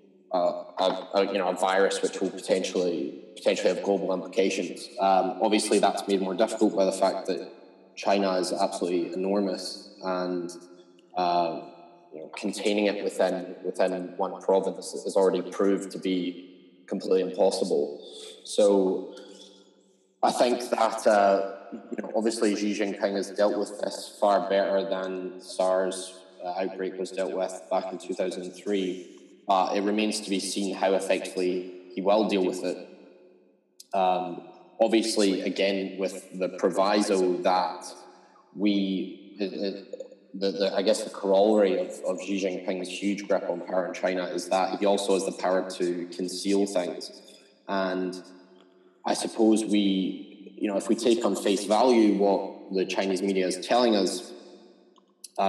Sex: male